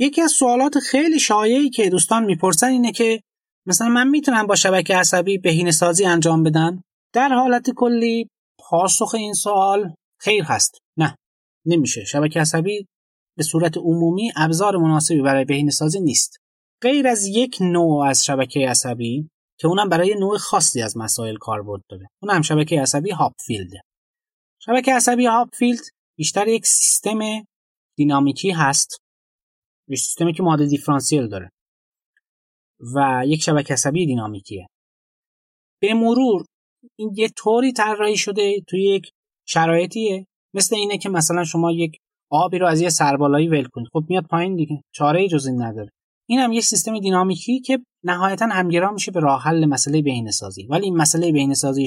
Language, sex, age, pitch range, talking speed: Persian, male, 30-49, 145-210 Hz, 145 wpm